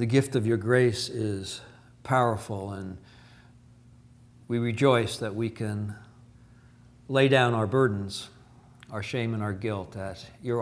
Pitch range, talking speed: 115-125 Hz, 135 wpm